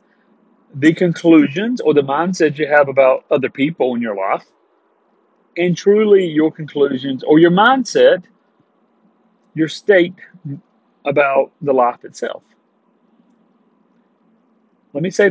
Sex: male